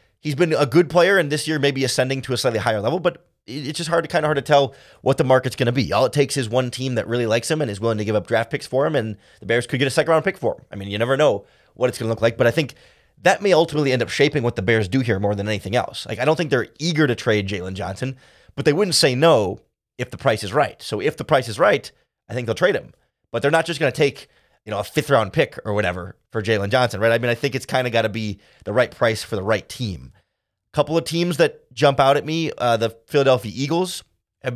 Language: English